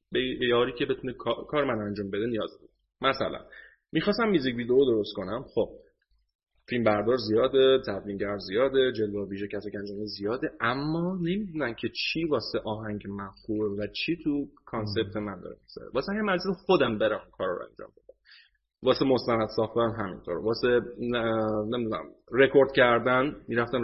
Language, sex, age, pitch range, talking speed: Persian, male, 30-49, 110-145 Hz, 145 wpm